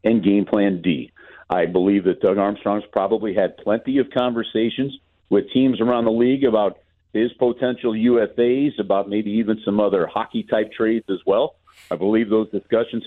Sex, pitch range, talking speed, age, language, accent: male, 105-145 Hz, 165 wpm, 50-69, English, American